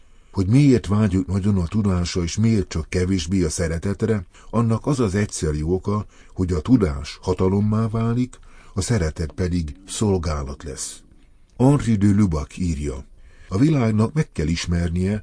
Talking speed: 140 wpm